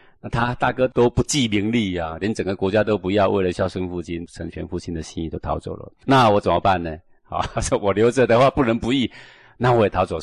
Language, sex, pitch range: Chinese, male, 85-115 Hz